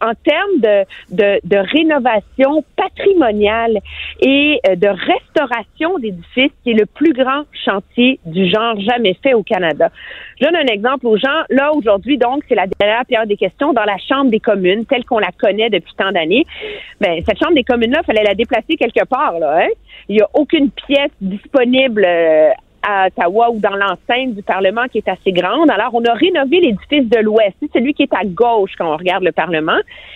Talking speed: 195 wpm